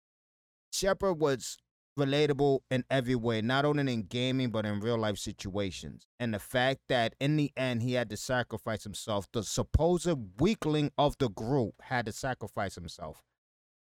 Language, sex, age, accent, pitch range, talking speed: English, male, 30-49, American, 100-130 Hz, 160 wpm